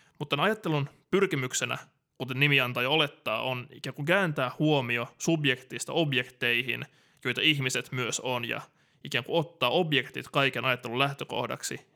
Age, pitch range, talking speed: 20-39, 125-150 Hz, 140 wpm